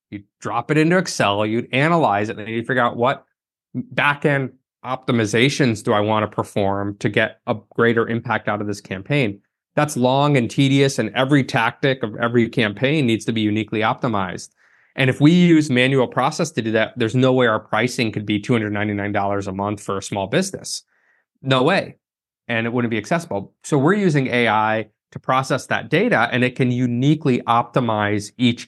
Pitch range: 110-135 Hz